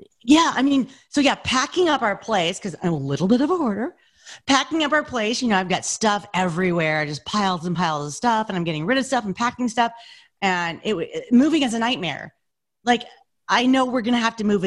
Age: 30-49